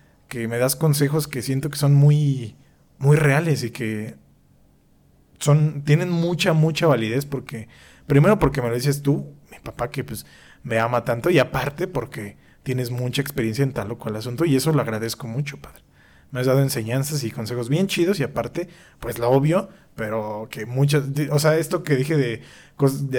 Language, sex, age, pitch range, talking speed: Spanish, male, 30-49, 115-150 Hz, 185 wpm